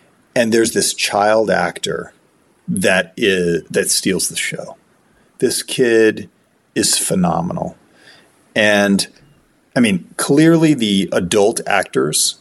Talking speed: 105 wpm